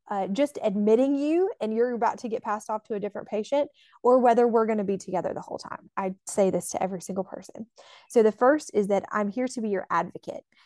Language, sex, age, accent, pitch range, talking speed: English, female, 20-39, American, 190-225 Hz, 240 wpm